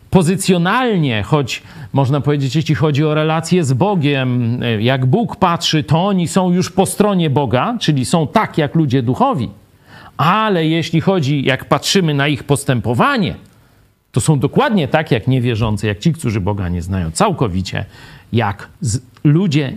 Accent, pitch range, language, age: native, 110-155 Hz, Polish, 50-69